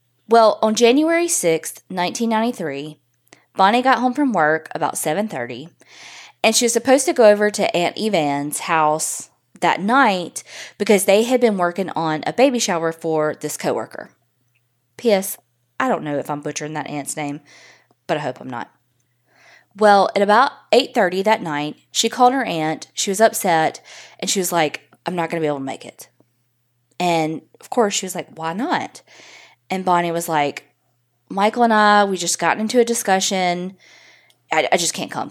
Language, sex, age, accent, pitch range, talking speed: English, female, 20-39, American, 150-215 Hz, 175 wpm